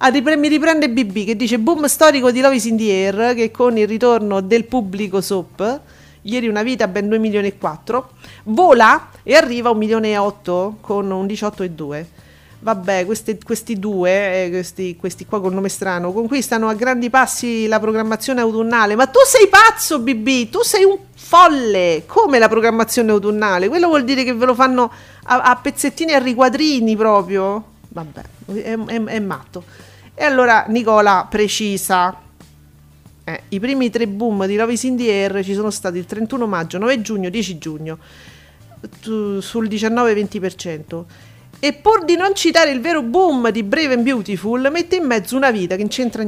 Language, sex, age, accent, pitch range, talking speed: Italian, female, 40-59, native, 195-255 Hz, 175 wpm